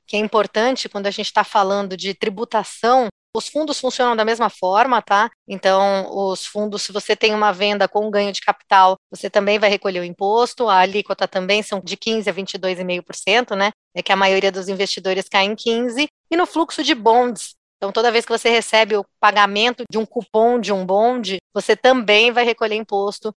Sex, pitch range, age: female, 200-230 Hz, 20-39